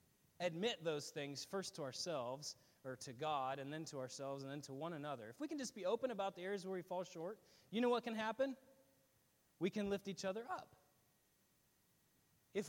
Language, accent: English, American